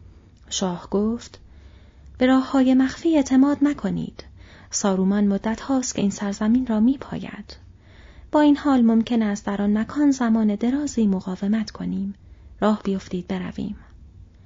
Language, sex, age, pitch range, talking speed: Persian, female, 30-49, 190-235 Hz, 125 wpm